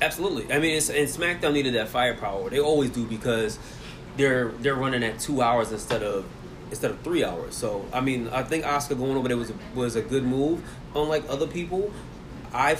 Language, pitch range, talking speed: English, 120-150 Hz, 200 wpm